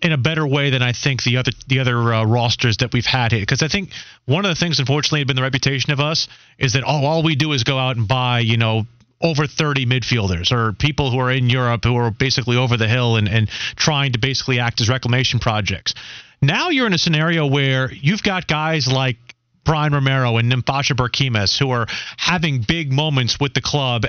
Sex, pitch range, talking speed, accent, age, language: male, 125-160 Hz, 225 wpm, American, 30-49, English